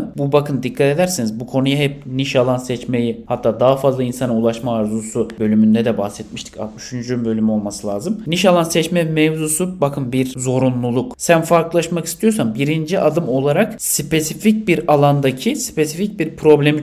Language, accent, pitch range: Turkish, native, 130-165 Hz